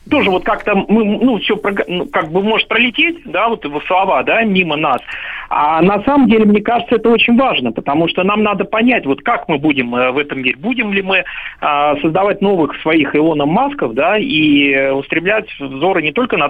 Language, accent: Russian, native